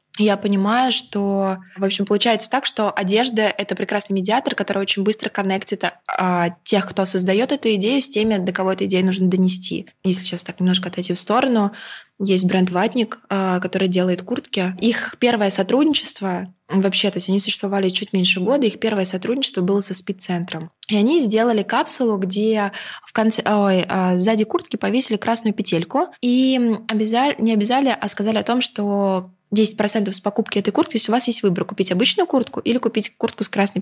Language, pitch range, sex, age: Russian, 190-230 Hz, female, 20-39